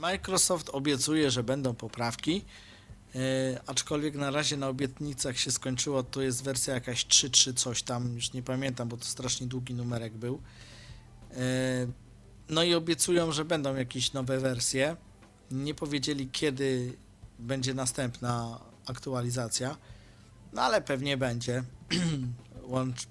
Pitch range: 120-150 Hz